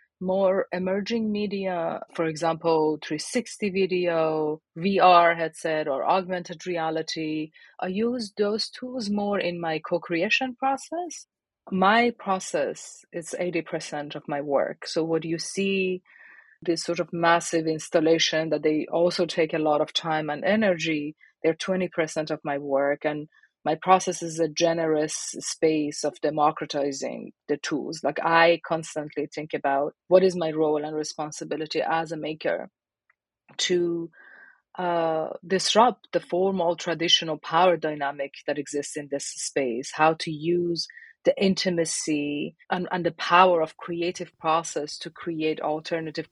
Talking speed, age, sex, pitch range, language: 135 wpm, 30-49, female, 155-180 Hz, English